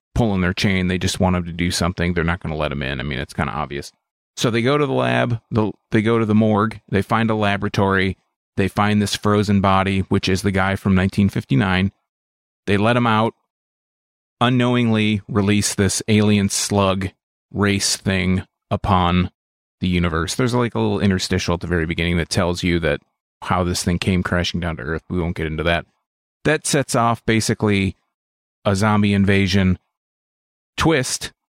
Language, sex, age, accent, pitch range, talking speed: English, male, 30-49, American, 90-110 Hz, 185 wpm